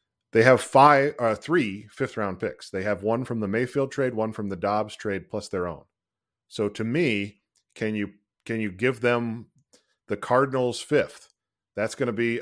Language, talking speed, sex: English, 190 wpm, male